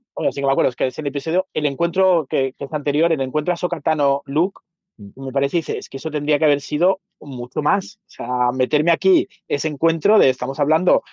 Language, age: Spanish, 30-49